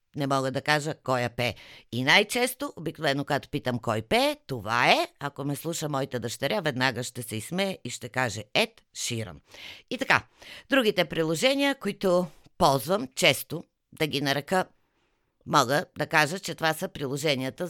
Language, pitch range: Bulgarian, 135-200 Hz